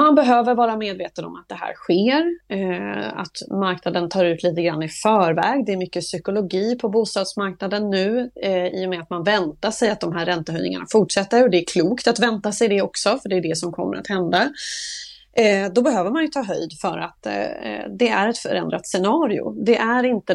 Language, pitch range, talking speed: Swedish, 180-240 Hz, 205 wpm